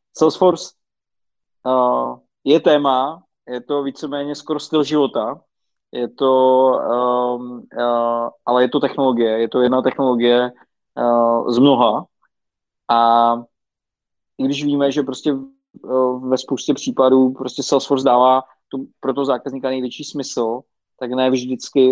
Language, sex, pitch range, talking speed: Czech, male, 120-135 Hz, 125 wpm